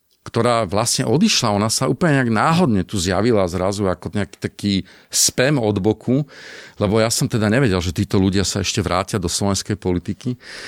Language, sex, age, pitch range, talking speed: Slovak, male, 40-59, 95-125 Hz, 175 wpm